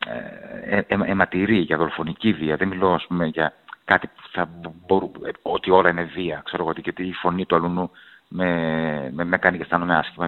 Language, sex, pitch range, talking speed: Greek, male, 85-105 Hz, 205 wpm